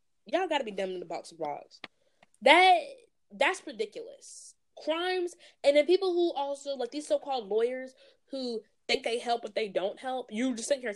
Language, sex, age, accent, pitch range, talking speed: English, female, 20-39, American, 195-275 Hz, 190 wpm